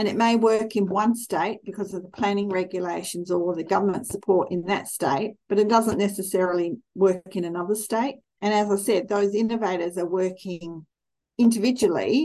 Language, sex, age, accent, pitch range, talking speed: English, female, 50-69, Australian, 180-220 Hz, 175 wpm